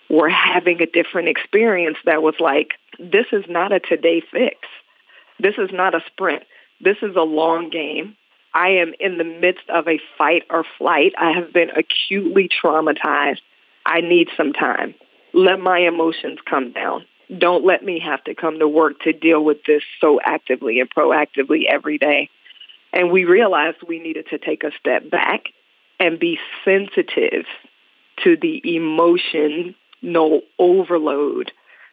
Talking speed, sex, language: 160 wpm, female, English